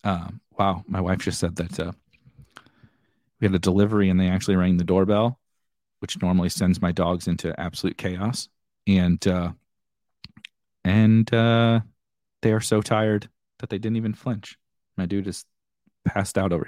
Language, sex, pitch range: English, male, 95-125 Hz